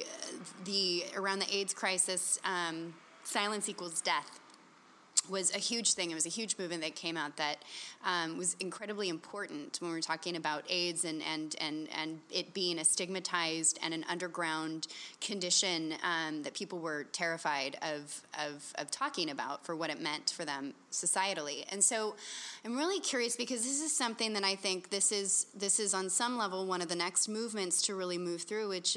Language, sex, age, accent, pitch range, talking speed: English, female, 20-39, American, 170-210 Hz, 185 wpm